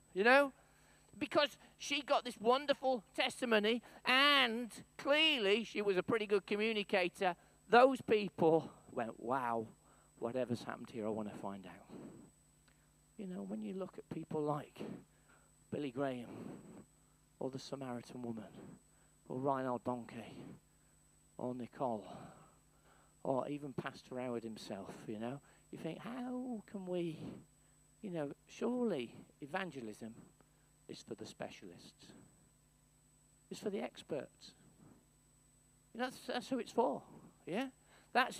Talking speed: 120 wpm